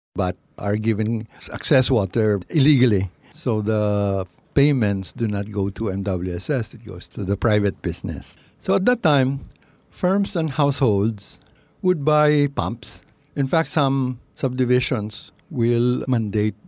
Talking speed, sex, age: 130 wpm, male, 60-79